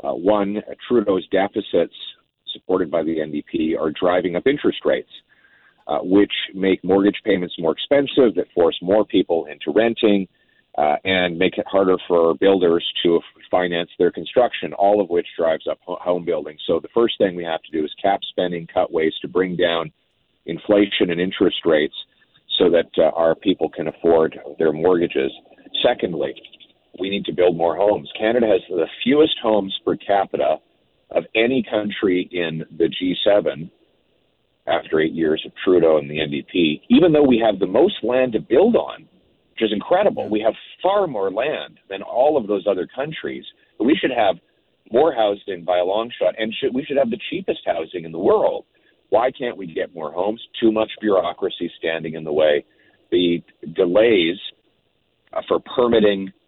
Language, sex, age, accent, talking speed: English, male, 40-59, American, 170 wpm